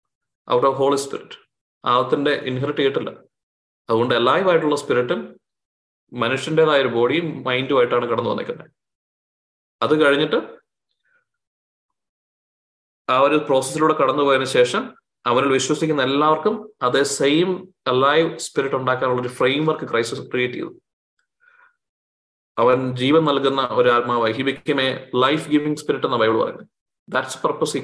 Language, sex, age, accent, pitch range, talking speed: Malayalam, male, 20-39, native, 135-165 Hz, 155 wpm